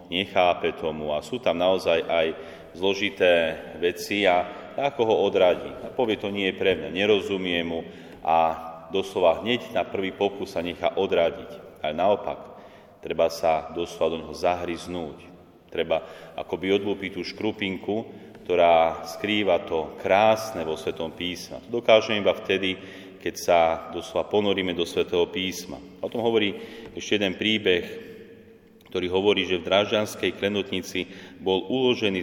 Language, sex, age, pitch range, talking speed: Slovak, male, 30-49, 90-100 Hz, 140 wpm